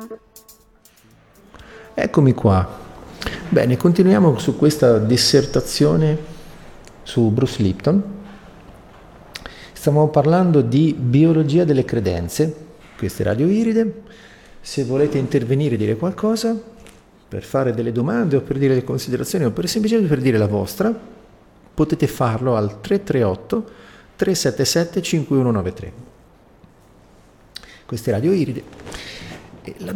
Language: Italian